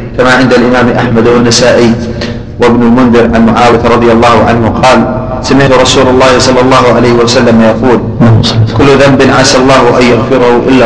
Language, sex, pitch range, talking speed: Arabic, male, 115-130 Hz, 155 wpm